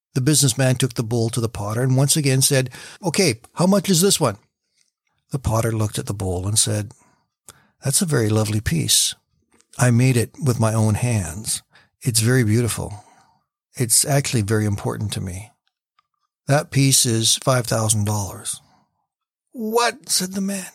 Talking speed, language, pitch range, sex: 160 wpm, English, 115-150 Hz, male